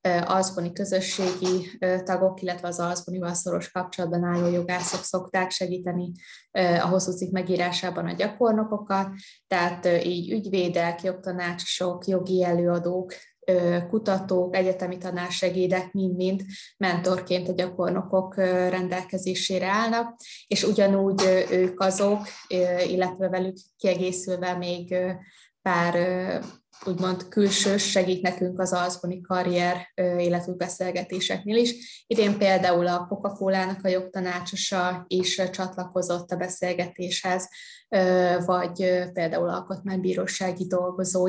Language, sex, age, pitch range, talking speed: Hungarian, female, 20-39, 180-190 Hz, 100 wpm